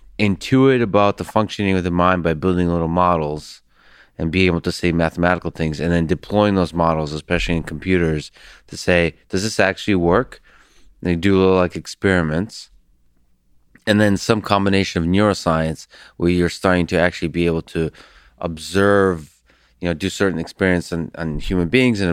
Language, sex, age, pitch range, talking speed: English, male, 30-49, 80-95 Hz, 175 wpm